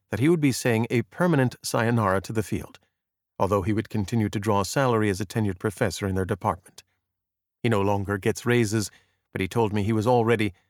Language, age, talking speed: English, 50-69, 215 wpm